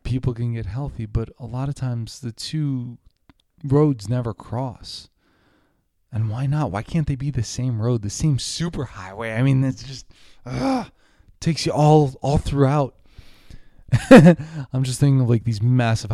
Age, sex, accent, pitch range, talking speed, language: 20-39, male, American, 110-145 Hz, 165 wpm, English